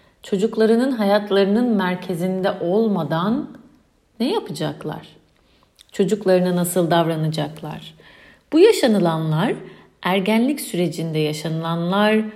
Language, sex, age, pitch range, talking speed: Turkish, female, 40-59, 175-225 Hz, 70 wpm